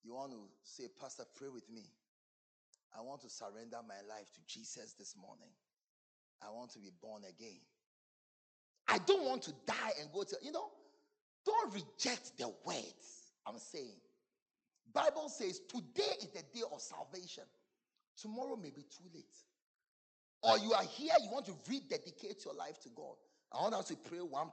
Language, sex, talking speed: English, male, 175 wpm